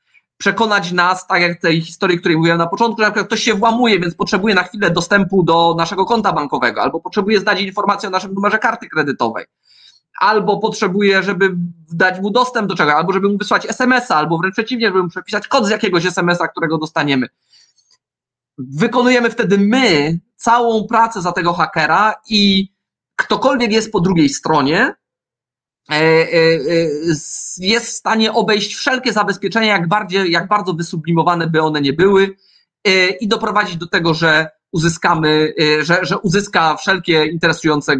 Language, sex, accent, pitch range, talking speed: Polish, male, native, 155-205 Hz, 155 wpm